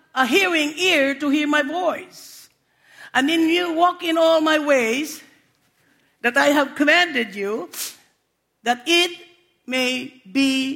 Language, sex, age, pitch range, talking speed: English, female, 50-69, 245-315 Hz, 135 wpm